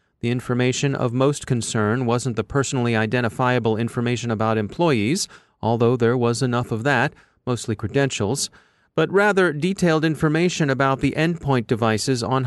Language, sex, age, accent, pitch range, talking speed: English, male, 30-49, American, 120-150 Hz, 140 wpm